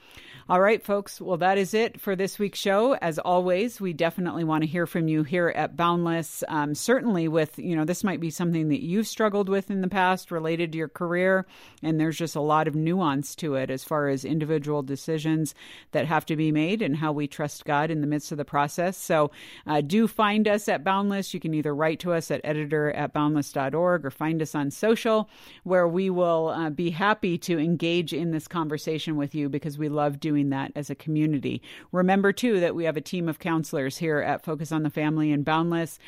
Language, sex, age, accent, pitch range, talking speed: English, female, 50-69, American, 150-180 Hz, 225 wpm